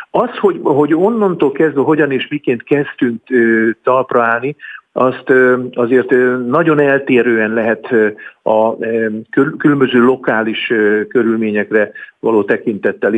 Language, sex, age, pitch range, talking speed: Hungarian, male, 50-69, 115-140 Hz, 90 wpm